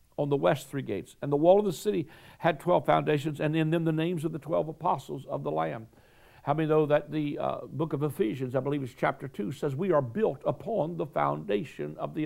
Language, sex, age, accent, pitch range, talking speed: English, male, 60-79, American, 135-175 Hz, 240 wpm